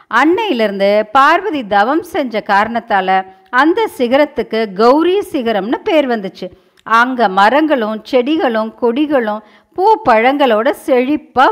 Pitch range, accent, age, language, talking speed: 215-310 Hz, native, 50-69, Tamil, 95 wpm